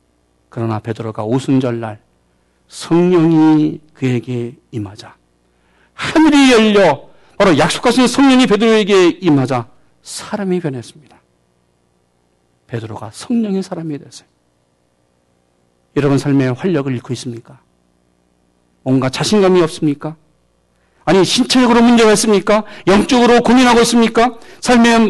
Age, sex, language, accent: 50-69, male, Korean, native